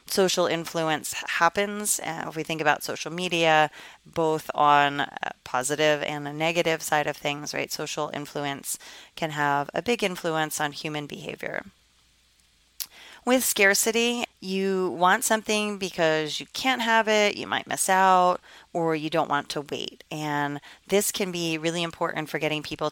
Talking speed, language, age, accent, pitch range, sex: 155 wpm, English, 30-49, American, 150-185 Hz, female